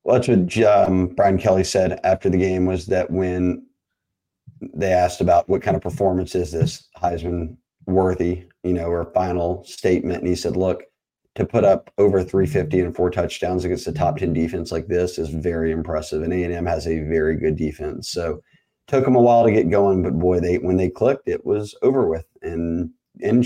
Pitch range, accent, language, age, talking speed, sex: 85-95 Hz, American, English, 30-49, 200 wpm, male